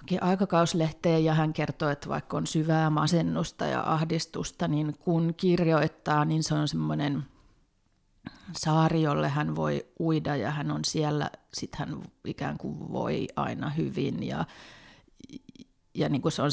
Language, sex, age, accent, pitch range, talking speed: Finnish, female, 30-49, native, 150-180 Hz, 140 wpm